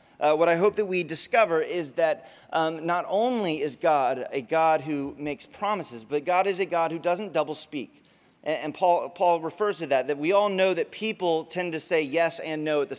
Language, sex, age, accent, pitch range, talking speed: English, male, 30-49, American, 140-185 Hz, 220 wpm